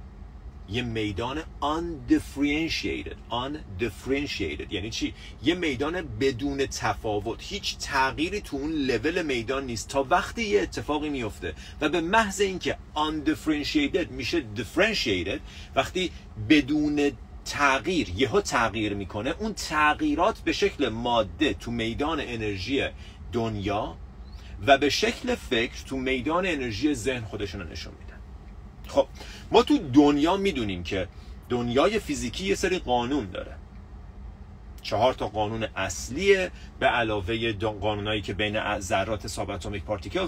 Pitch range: 100-150 Hz